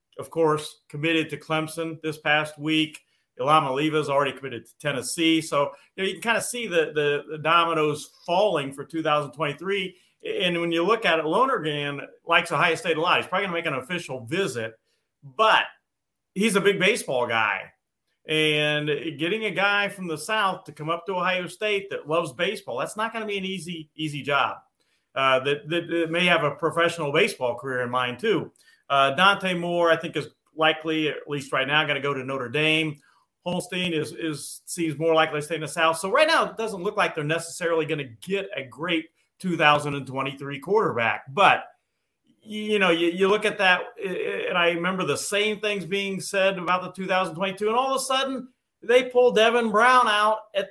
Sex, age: male, 40-59